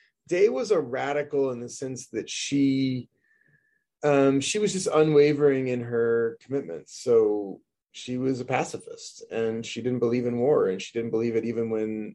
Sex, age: male, 30-49